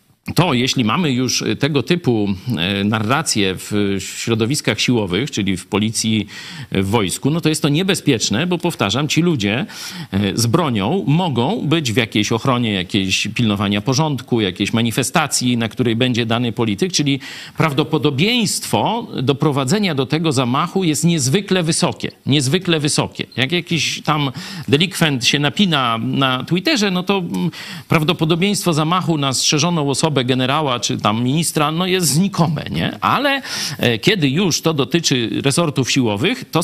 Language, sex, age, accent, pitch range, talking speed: Polish, male, 50-69, native, 120-170 Hz, 135 wpm